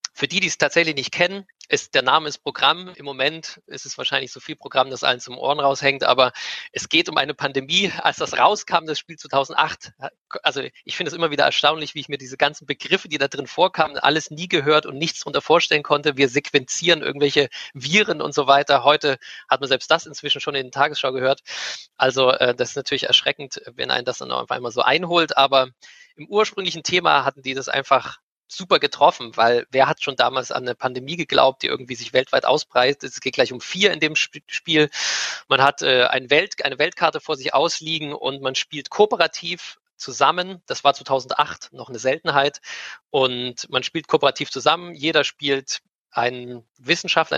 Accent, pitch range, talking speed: German, 135-165 Hz, 195 wpm